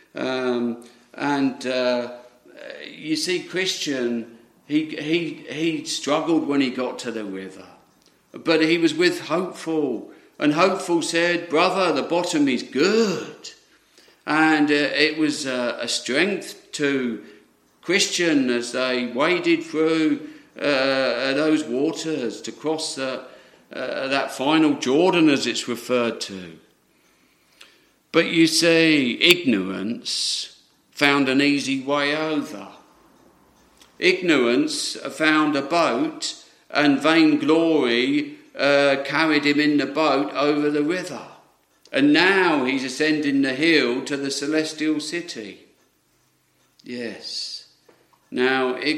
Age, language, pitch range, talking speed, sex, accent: 50-69, English, 130-165 Hz, 115 wpm, male, British